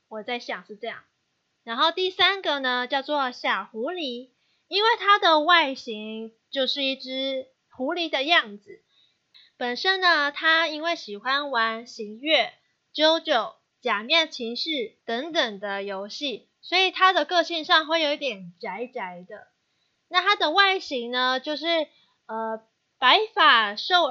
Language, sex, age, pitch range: Chinese, female, 20-39, 230-330 Hz